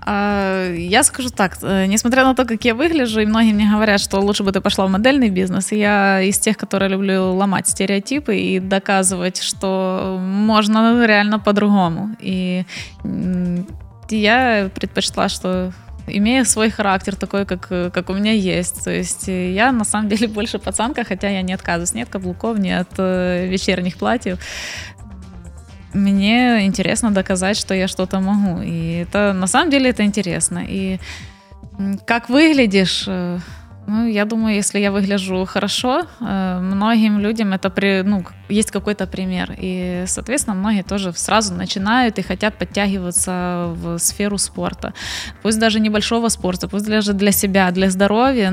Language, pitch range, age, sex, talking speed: Ukrainian, 185-215 Hz, 20-39, female, 150 wpm